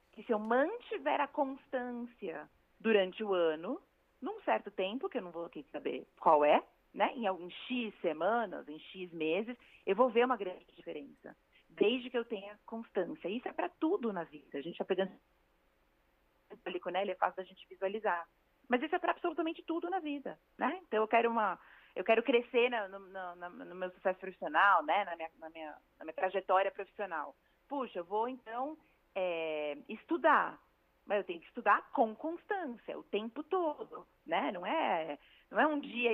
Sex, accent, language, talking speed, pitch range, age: female, Brazilian, Portuguese, 185 wpm, 190-255 Hz, 30-49